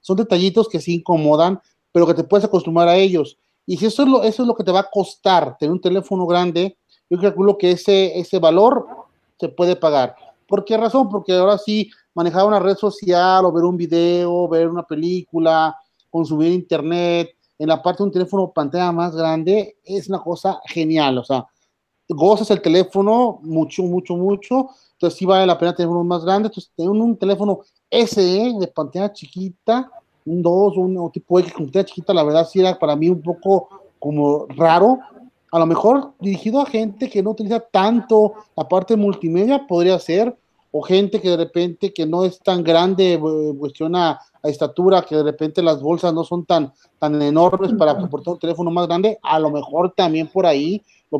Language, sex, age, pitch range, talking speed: Spanish, male, 40-59, 170-200 Hz, 195 wpm